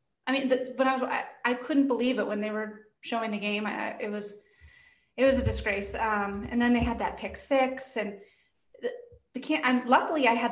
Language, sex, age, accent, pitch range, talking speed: English, female, 30-49, American, 205-255 Hz, 210 wpm